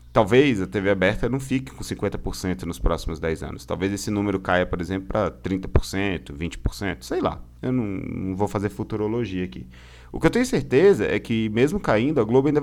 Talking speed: 200 wpm